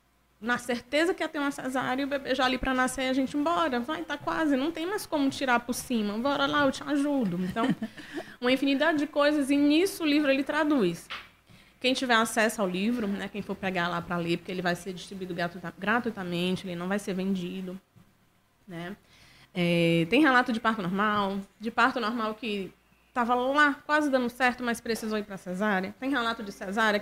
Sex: female